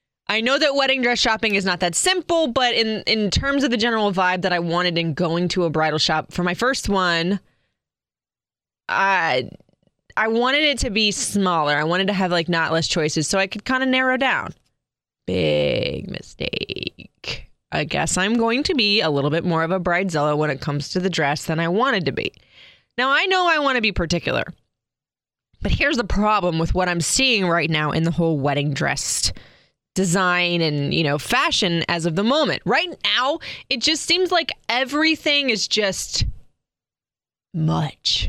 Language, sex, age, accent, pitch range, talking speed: English, female, 20-39, American, 170-240 Hz, 190 wpm